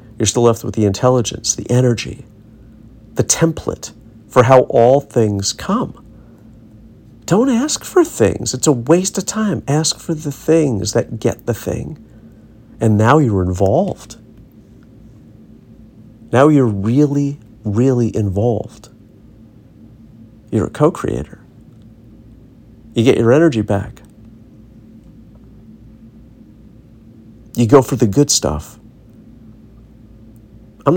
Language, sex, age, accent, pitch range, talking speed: English, male, 50-69, American, 110-120 Hz, 110 wpm